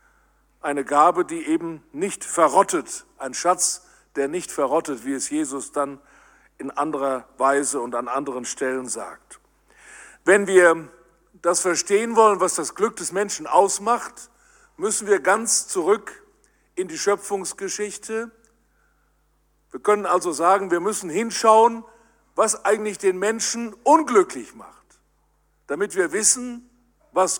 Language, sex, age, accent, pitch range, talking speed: German, male, 50-69, German, 170-230 Hz, 125 wpm